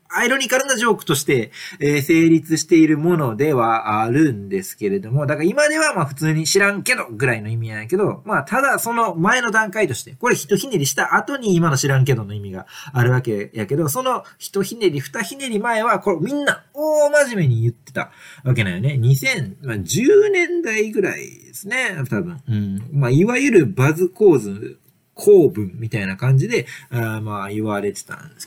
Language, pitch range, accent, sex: Japanese, 120-195 Hz, native, male